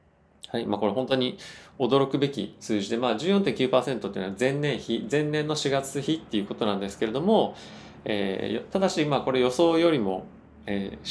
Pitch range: 105-135 Hz